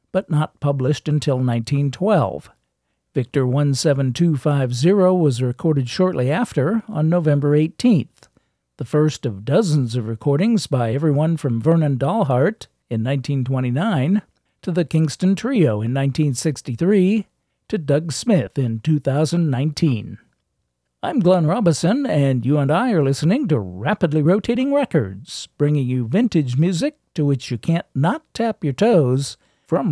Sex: male